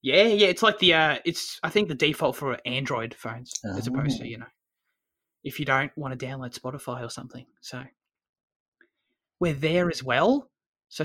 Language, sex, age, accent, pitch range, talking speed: English, male, 20-39, Australian, 130-165 Hz, 190 wpm